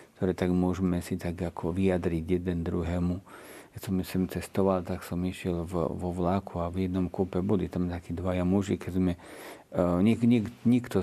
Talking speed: 185 wpm